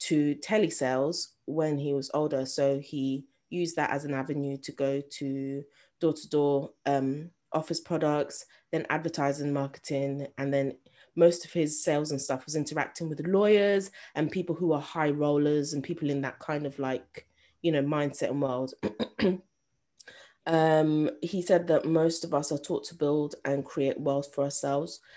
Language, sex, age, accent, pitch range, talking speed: English, female, 20-39, British, 140-165 Hz, 165 wpm